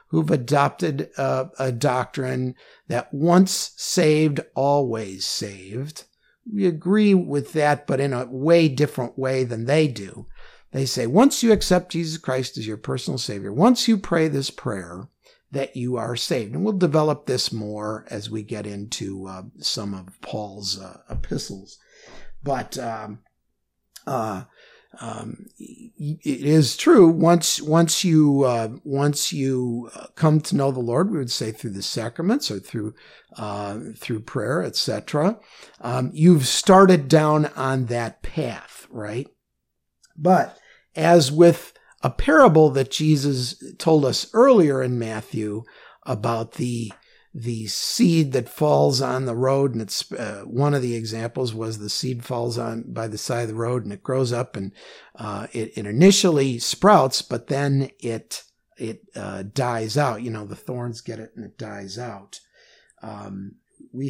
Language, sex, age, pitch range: English, male, 50-69, 115-155 Hz